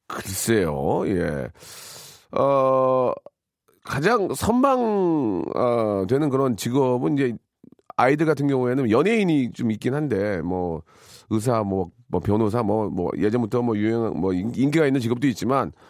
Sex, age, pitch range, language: male, 40-59, 100-145 Hz, Korean